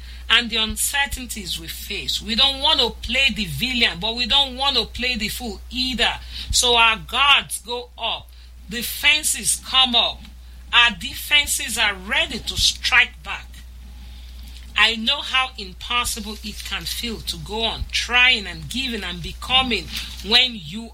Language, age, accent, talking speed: English, 40-59, Nigerian, 150 wpm